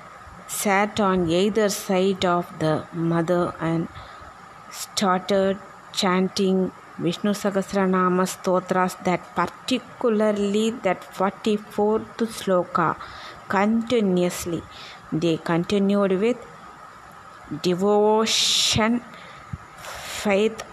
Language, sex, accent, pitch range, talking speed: Tamil, female, native, 180-210 Hz, 70 wpm